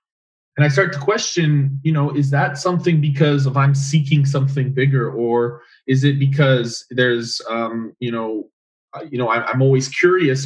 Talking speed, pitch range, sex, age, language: 165 wpm, 125-145 Hz, male, 20-39, Swedish